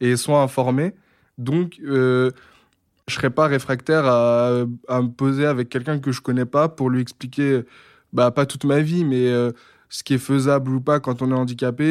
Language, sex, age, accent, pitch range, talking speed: French, male, 20-39, French, 125-145 Hz, 205 wpm